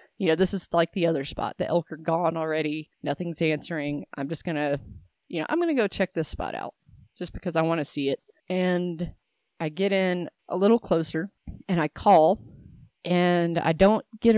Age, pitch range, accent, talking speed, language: 30-49, 155-195 Hz, American, 200 wpm, English